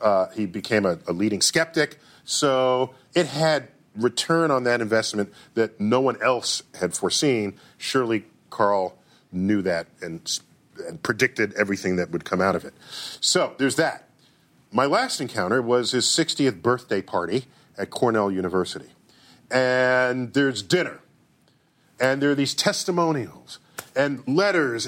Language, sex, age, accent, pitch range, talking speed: English, male, 40-59, American, 140-200 Hz, 140 wpm